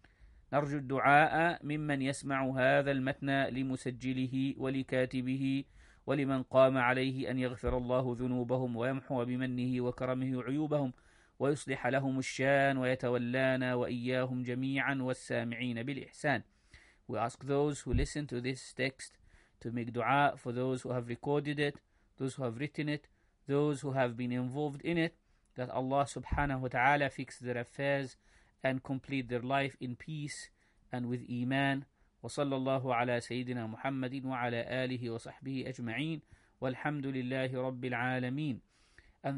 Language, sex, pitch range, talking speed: English, male, 125-140 Hz, 130 wpm